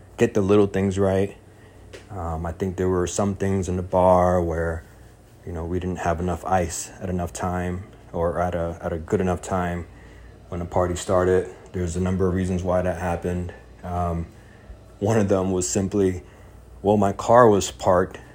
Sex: male